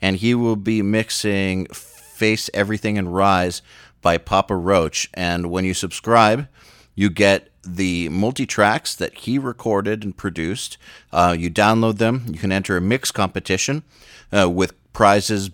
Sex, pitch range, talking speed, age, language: male, 90-105 Hz, 145 wpm, 40-59, English